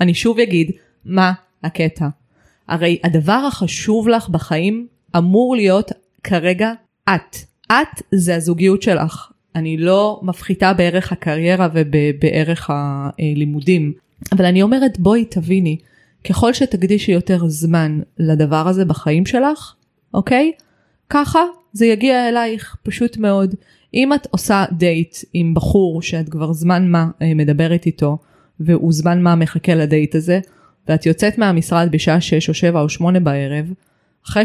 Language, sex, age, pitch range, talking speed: Hebrew, female, 20-39, 165-200 Hz, 125 wpm